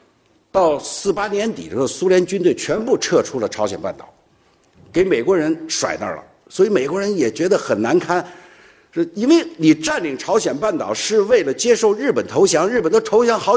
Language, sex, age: Chinese, male, 60-79